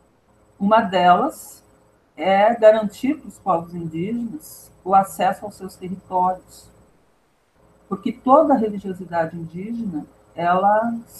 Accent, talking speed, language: Brazilian, 100 wpm, Portuguese